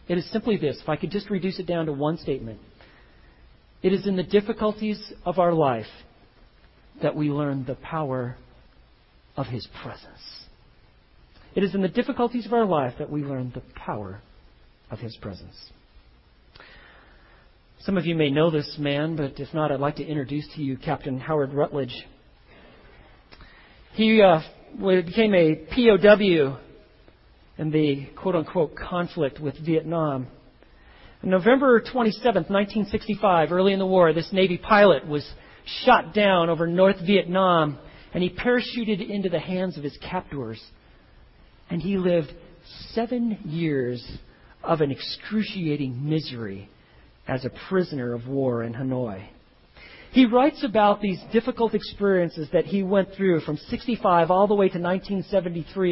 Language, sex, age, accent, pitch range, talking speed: English, male, 40-59, American, 135-195 Hz, 145 wpm